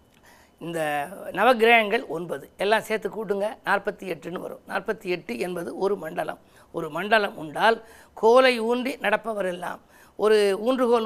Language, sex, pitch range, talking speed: Tamil, female, 195-230 Hz, 120 wpm